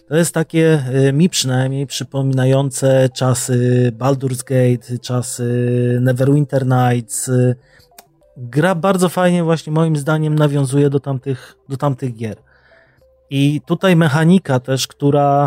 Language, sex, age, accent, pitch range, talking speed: Polish, male, 30-49, native, 130-145 Hz, 110 wpm